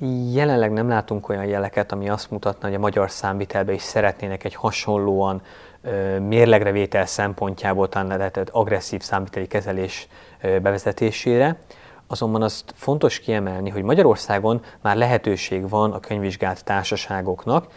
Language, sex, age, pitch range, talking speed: Hungarian, male, 30-49, 95-115 Hz, 120 wpm